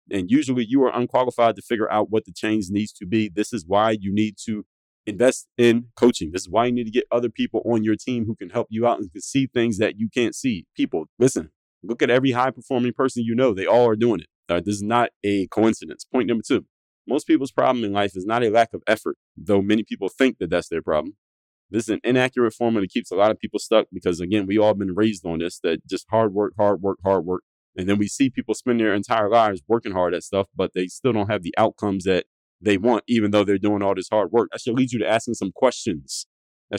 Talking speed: 260 wpm